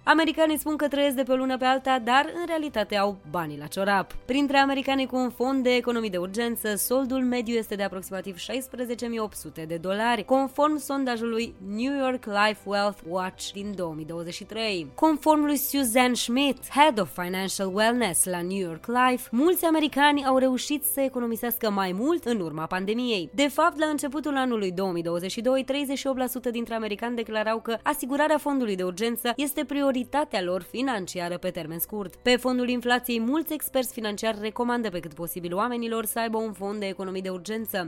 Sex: female